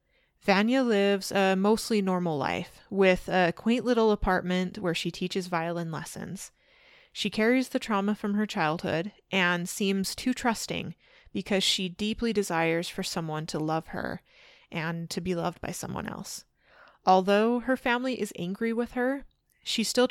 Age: 20-39